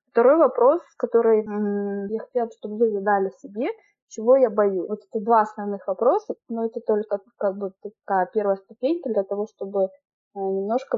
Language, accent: Russian, native